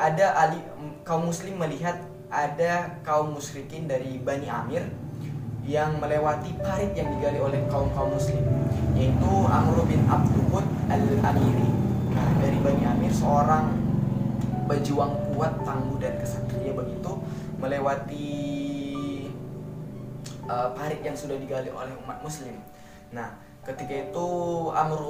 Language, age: Indonesian, 20-39